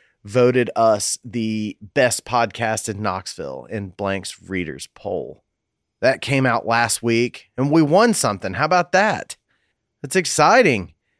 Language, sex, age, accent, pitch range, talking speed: English, male, 30-49, American, 105-140 Hz, 135 wpm